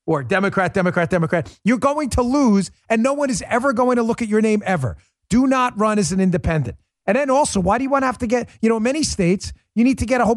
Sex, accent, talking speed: male, American, 270 wpm